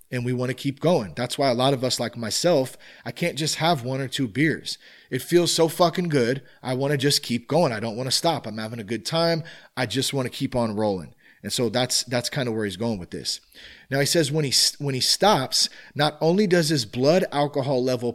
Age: 30-49